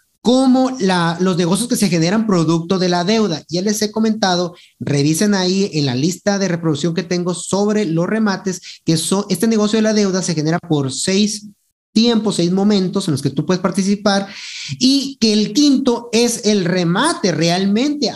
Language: Spanish